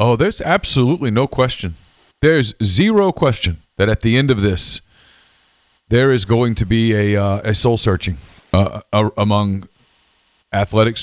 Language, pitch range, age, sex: English, 90-110 Hz, 40-59, male